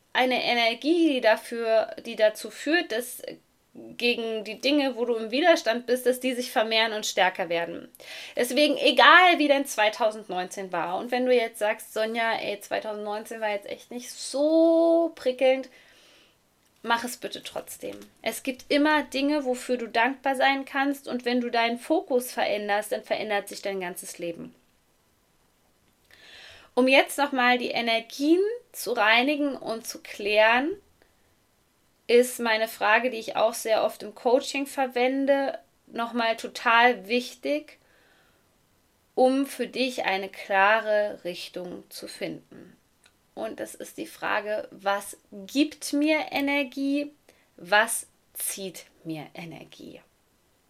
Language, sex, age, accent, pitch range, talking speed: German, female, 20-39, German, 220-280 Hz, 135 wpm